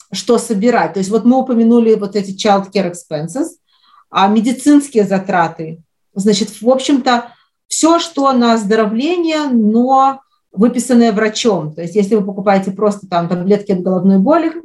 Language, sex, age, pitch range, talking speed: Russian, female, 30-49, 205-255 Hz, 150 wpm